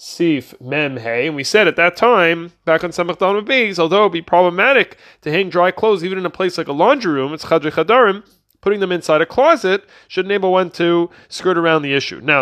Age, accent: 30-49, American